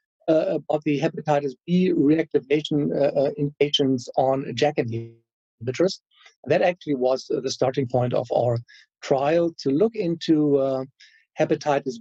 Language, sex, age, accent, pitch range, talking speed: English, male, 50-69, German, 140-180 Hz, 135 wpm